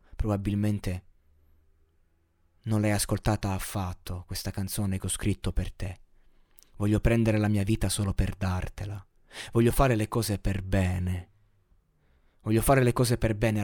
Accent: native